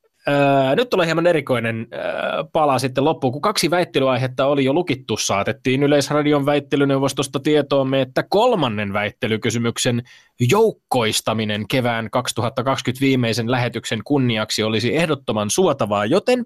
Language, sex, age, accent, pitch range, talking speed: Finnish, male, 20-39, native, 115-150 Hz, 115 wpm